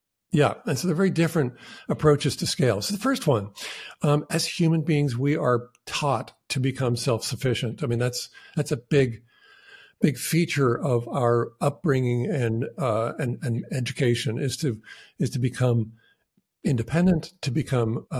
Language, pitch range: English, 120-160 Hz